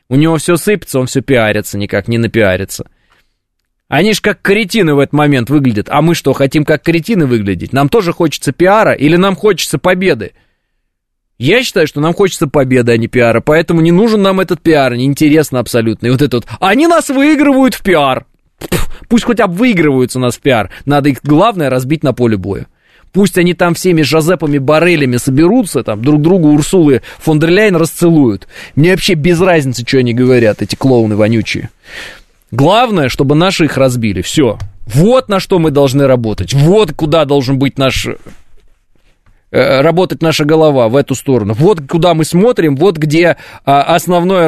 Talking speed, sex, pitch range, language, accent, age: 175 wpm, male, 125-180 Hz, Russian, native, 20-39